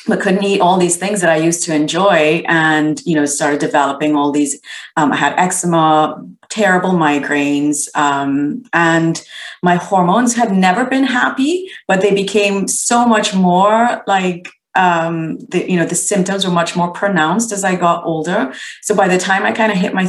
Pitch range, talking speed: 150-195 Hz, 185 wpm